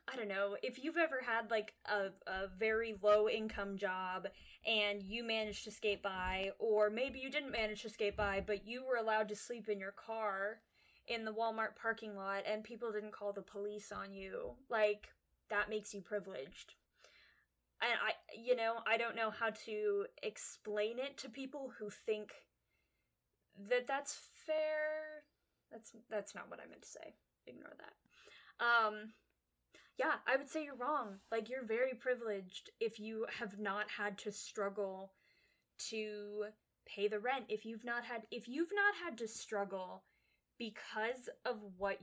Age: 10-29